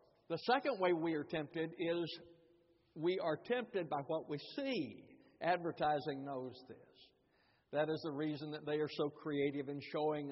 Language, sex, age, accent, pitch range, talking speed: English, male, 60-79, American, 135-175 Hz, 165 wpm